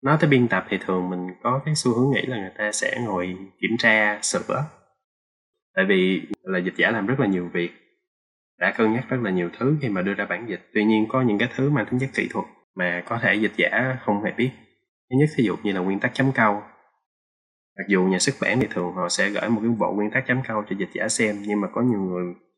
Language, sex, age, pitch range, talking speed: Vietnamese, male, 20-39, 95-125 Hz, 260 wpm